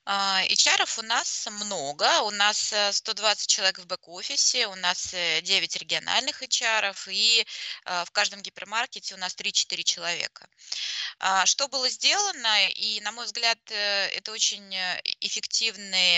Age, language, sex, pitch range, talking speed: 20-39, Russian, female, 185-225 Hz, 120 wpm